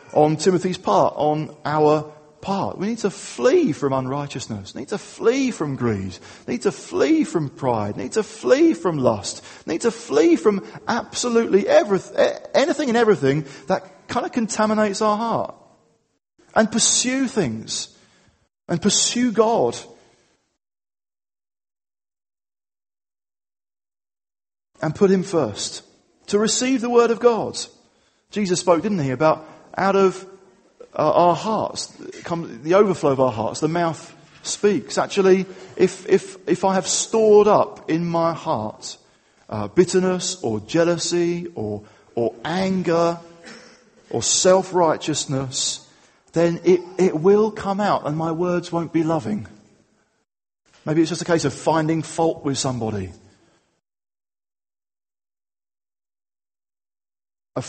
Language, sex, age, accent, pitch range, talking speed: English, male, 40-59, British, 145-205 Hz, 130 wpm